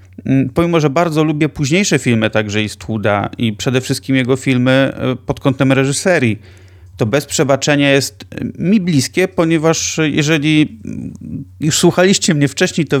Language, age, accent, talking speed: Polish, 30-49, native, 140 wpm